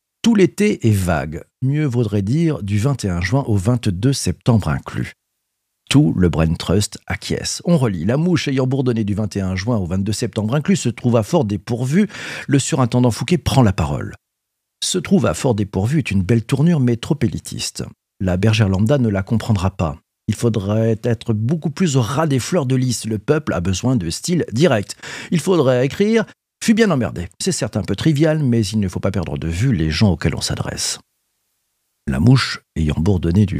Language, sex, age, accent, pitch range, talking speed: French, male, 50-69, French, 100-130 Hz, 195 wpm